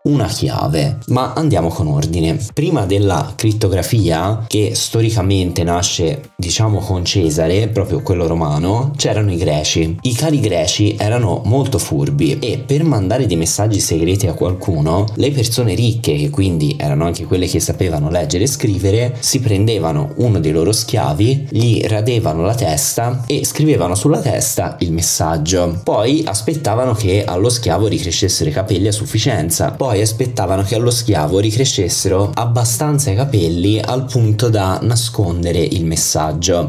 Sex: male